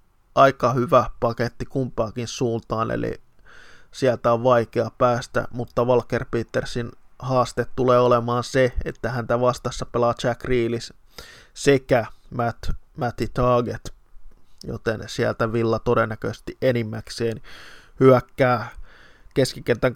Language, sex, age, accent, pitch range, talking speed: Finnish, male, 20-39, native, 115-125 Hz, 100 wpm